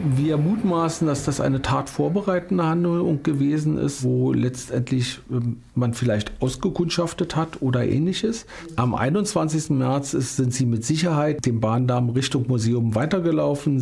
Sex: male